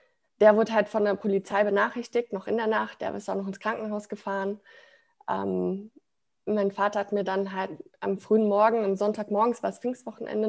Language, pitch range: German, 200-235 Hz